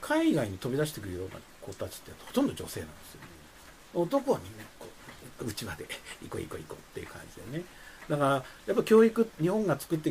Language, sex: Japanese, male